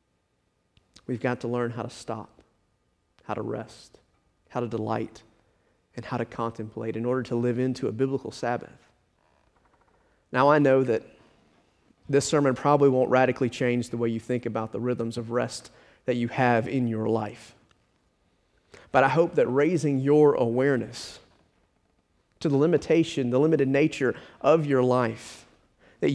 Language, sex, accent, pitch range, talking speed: English, male, American, 115-145 Hz, 155 wpm